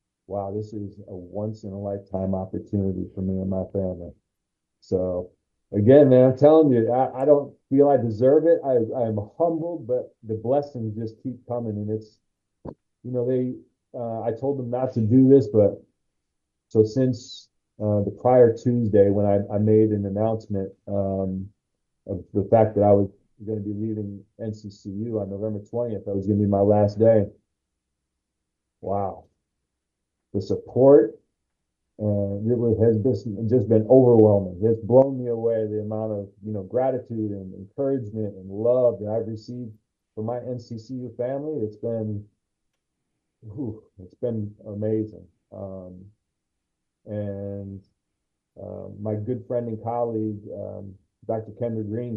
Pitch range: 100-115 Hz